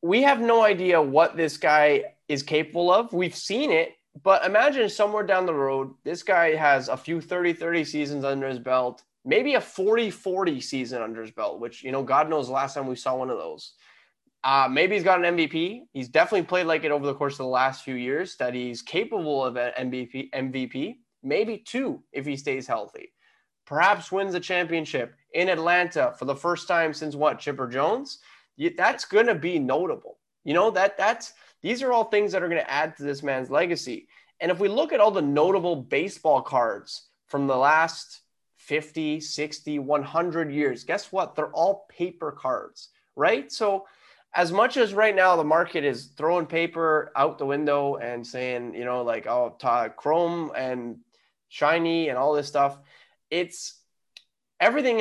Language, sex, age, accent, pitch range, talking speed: English, male, 20-39, American, 135-195 Hz, 185 wpm